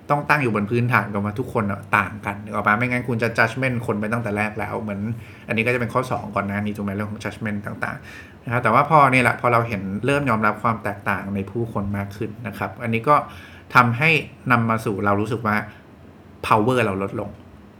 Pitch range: 100-120 Hz